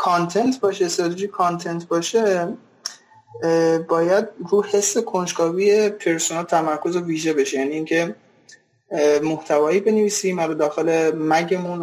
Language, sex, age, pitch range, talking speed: Persian, male, 20-39, 160-200 Hz, 105 wpm